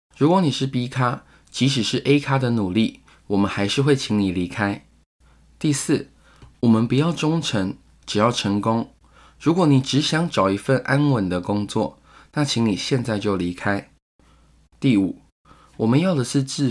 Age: 20-39